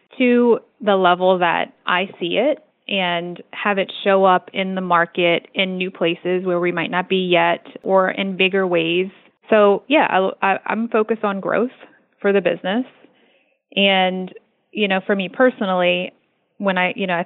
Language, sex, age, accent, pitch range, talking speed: English, female, 20-39, American, 180-200 Hz, 170 wpm